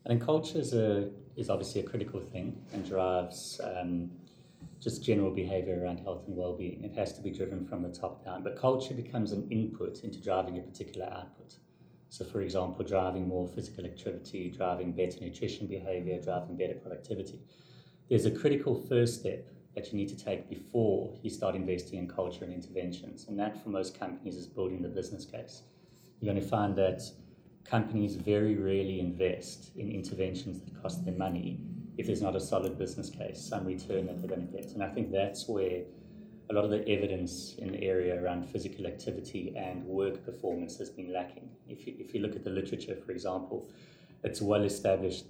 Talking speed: 190 wpm